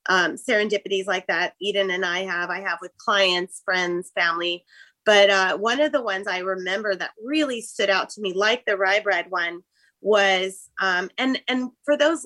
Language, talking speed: English, 190 wpm